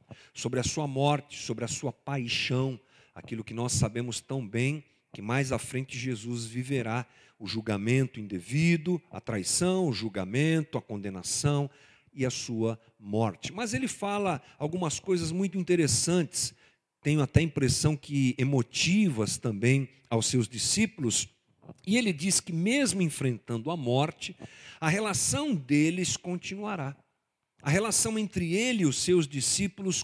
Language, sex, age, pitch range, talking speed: Portuguese, male, 50-69, 125-185 Hz, 140 wpm